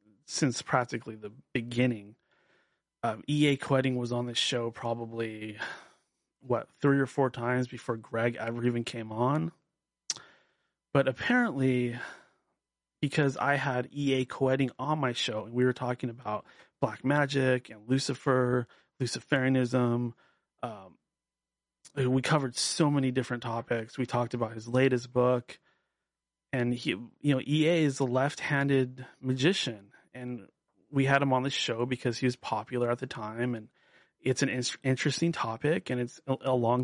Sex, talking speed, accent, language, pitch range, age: male, 140 wpm, American, English, 120-135 Hz, 30-49